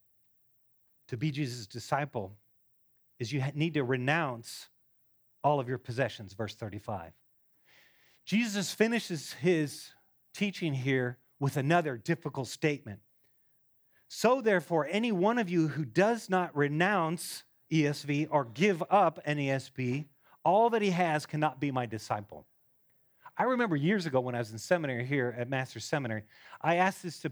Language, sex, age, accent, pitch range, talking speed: English, male, 40-59, American, 125-180 Hz, 145 wpm